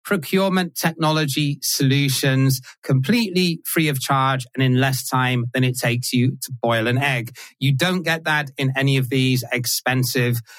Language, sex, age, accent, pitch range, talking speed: English, male, 30-49, British, 130-180 Hz, 160 wpm